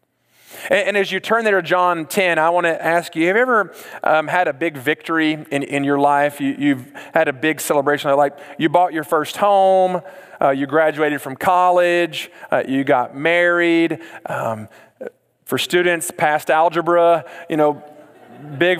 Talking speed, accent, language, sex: 170 wpm, American, English, male